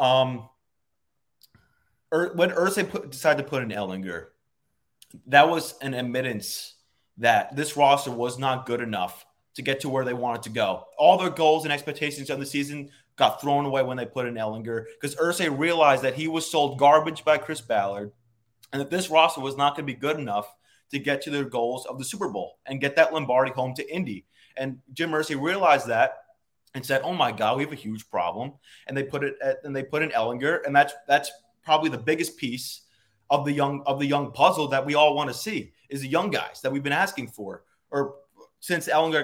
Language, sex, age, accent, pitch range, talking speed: English, male, 20-39, American, 130-150 Hz, 210 wpm